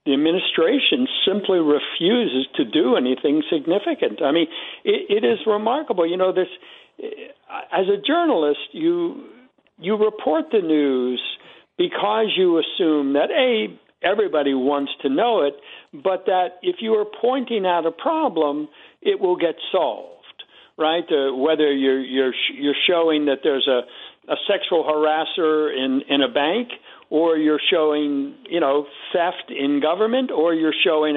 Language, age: English, 60-79